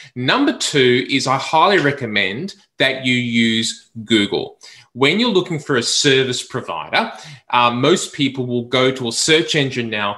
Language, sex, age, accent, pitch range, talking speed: English, male, 20-39, Australian, 120-145 Hz, 160 wpm